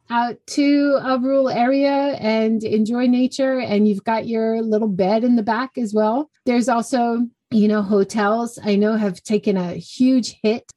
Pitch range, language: 200-255 Hz, English